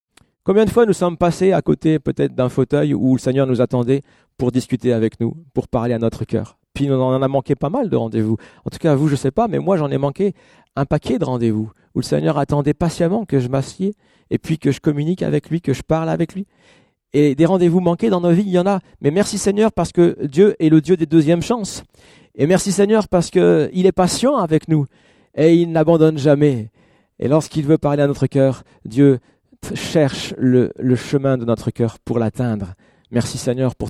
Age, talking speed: 40-59, 225 wpm